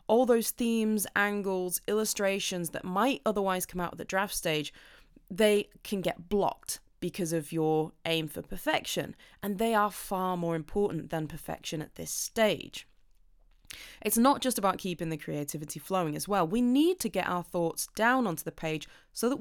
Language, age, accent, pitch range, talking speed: English, 20-39, British, 165-225 Hz, 175 wpm